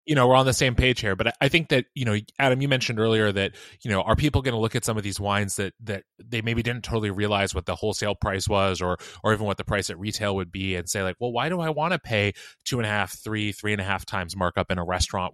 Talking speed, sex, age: 300 wpm, male, 20-39